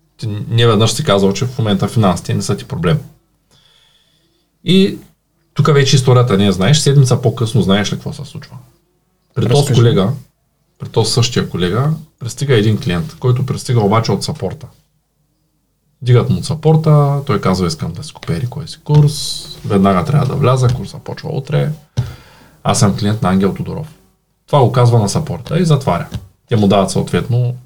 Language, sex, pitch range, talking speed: Bulgarian, male, 120-155 Hz, 170 wpm